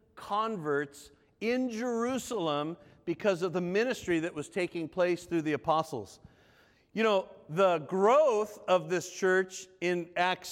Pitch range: 165-215 Hz